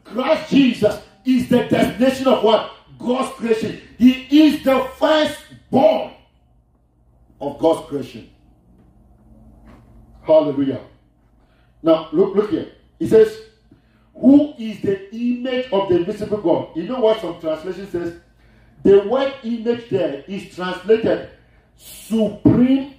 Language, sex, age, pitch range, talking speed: English, male, 50-69, 145-240 Hz, 115 wpm